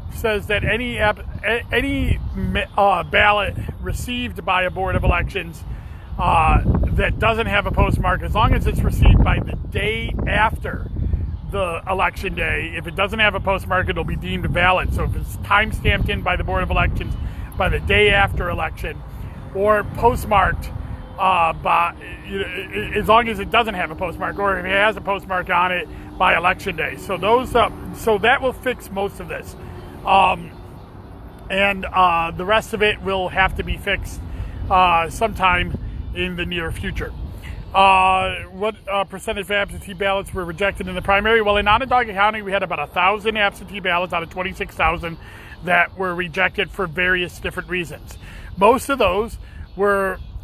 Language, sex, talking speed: English, male, 175 wpm